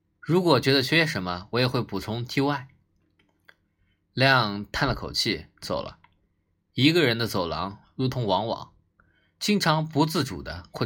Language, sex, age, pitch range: Chinese, male, 20-39, 95-135 Hz